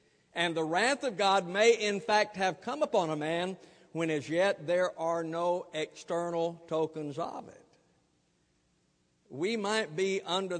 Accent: American